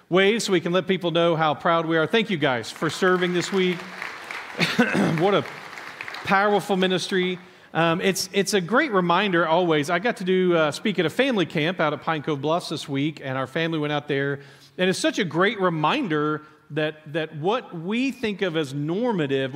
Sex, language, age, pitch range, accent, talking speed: male, English, 40-59, 150-190 Hz, American, 205 wpm